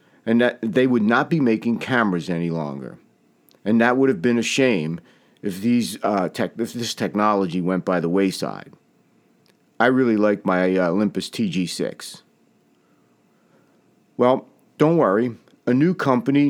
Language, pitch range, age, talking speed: English, 105-130 Hz, 50-69, 150 wpm